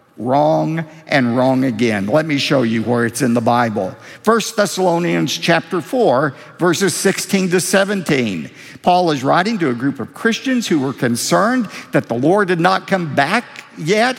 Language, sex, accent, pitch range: English, male, American, 155-215 Hz